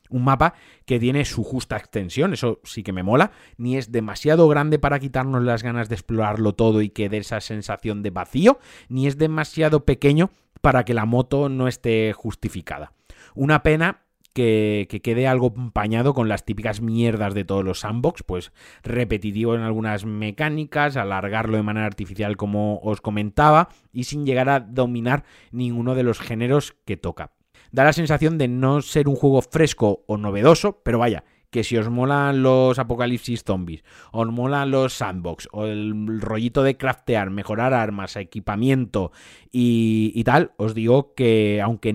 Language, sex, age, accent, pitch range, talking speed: Spanish, male, 30-49, Spanish, 105-135 Hz, 170 wpm